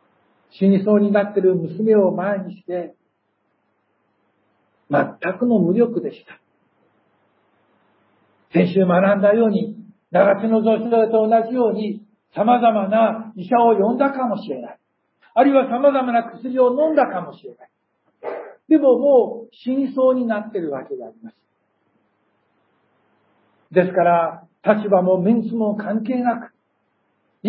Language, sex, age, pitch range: Japanese, male, 60-79, 200-245 Hz